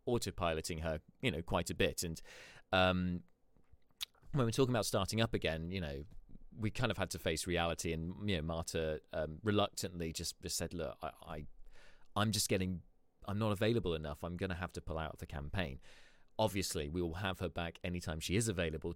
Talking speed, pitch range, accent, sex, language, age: 195 wpm, 85-100 Hz, British, male, English, 30-49